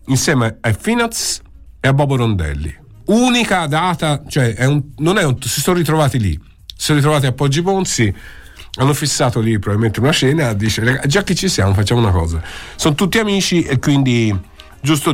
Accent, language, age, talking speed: native, Italian, 50-69, 180 wpm